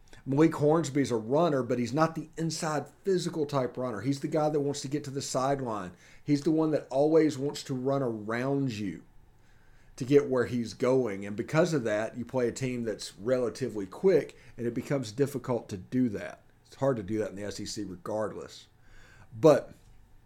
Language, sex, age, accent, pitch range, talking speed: English, male, 50-69, American, 105-140 Hz, 195 wpm